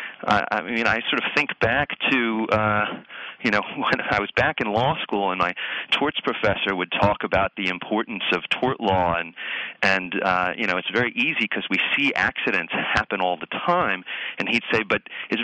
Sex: male